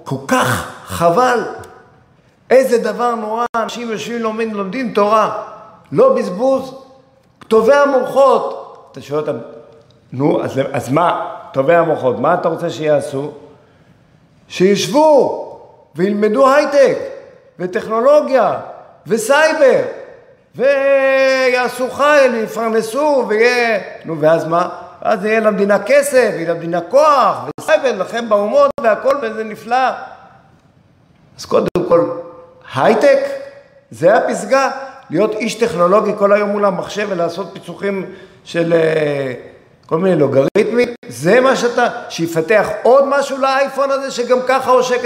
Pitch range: 170-265 Hz